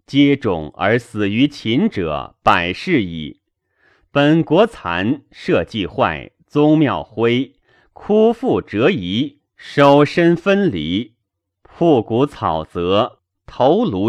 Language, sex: Chinese, male